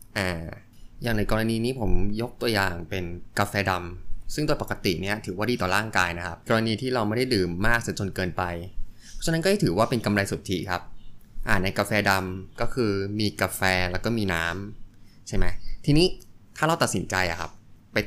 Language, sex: Thai, male